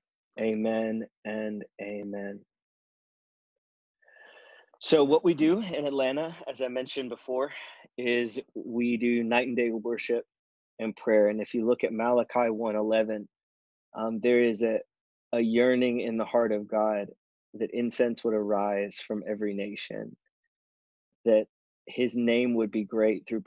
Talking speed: 140 wpm